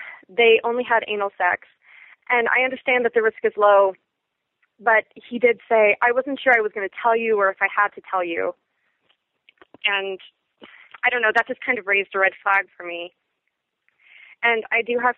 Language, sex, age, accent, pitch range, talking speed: English, female, 20-39, American, 195-245 Hz, 200 wpm